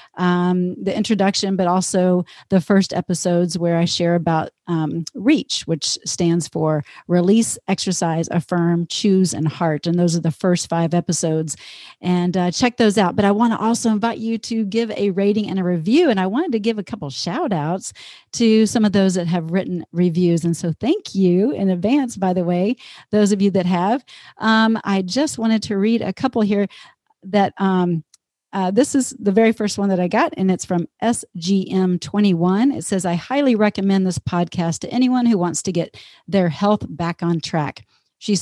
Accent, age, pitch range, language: American, 40-59, 175-220 Hz, English